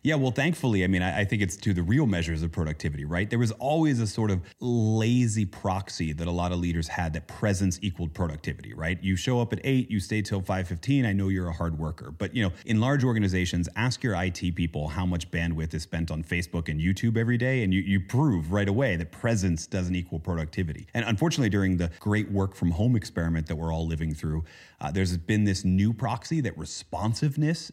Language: English